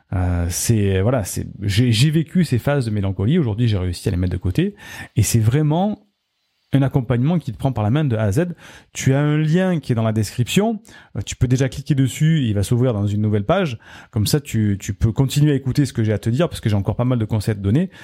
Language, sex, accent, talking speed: French, male, French, 265 wpm